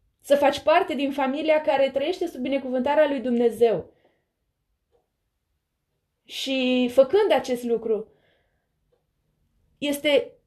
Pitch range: 270-330 Hz